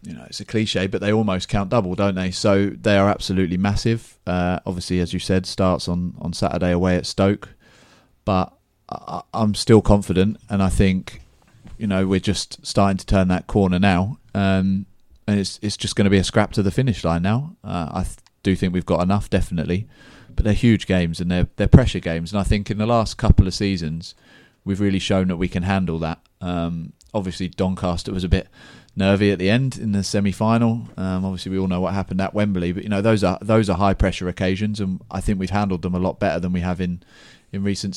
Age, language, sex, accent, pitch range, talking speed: 30-49, English, male, British, 90-100 Hz, 225 wpm